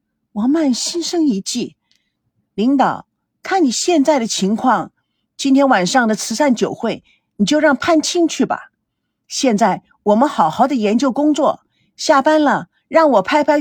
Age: 50-69